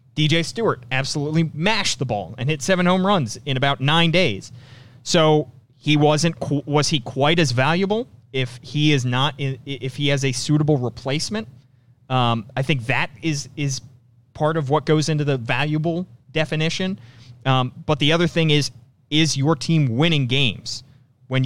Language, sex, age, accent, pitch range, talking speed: English, male, 30-49, American, 120-150 Hz, 165 wpm